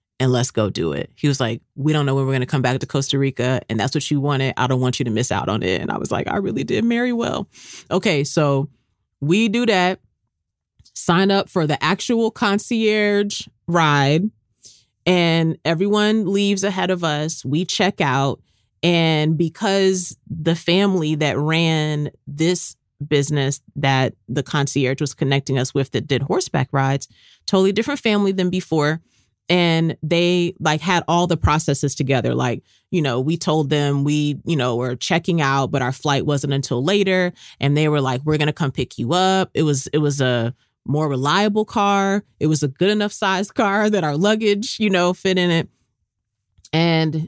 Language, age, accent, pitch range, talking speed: English, 30-49, American, 135-180 Hz, 190 wpm